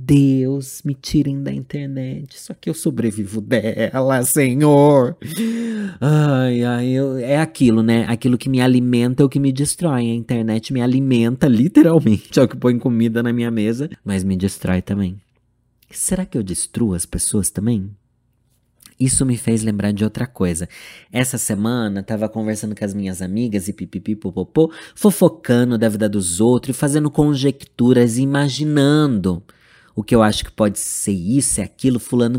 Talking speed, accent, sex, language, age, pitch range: 160 wpm, Brazilian, male, Portuguese, 20-39, 110-145 Hz